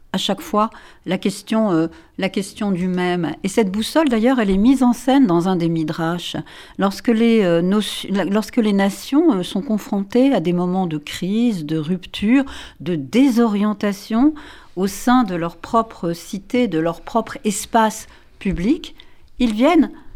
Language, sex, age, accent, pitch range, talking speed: French, female, 50-69, French, 175-245 Hz, 165 wpm